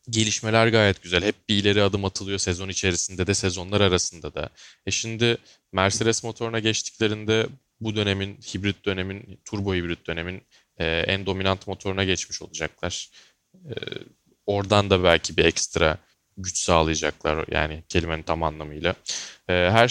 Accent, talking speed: native, 130 wpm